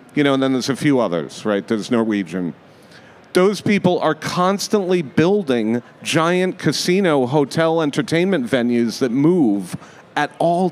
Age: 40-59